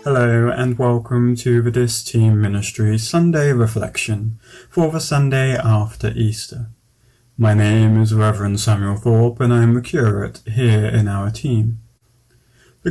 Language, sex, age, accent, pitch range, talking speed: English, male, 30-49, British, 115-140 Hz, 145 wpm